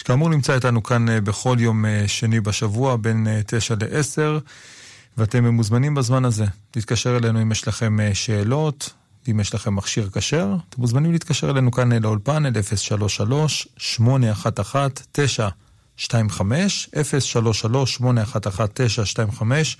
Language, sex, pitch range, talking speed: Hebrew, male, 110-130 Hz, 110 wpm